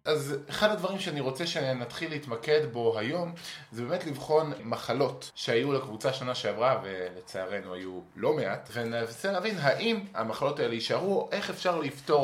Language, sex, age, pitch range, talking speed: Hebrew, male, 20-39, 120-155 Hz, 150 wpm